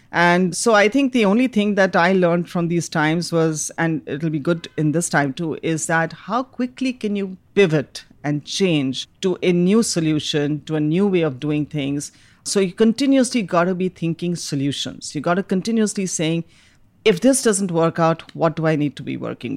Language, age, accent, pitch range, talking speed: English, 40-59, Indian, 145-185 Hz, 205 wpm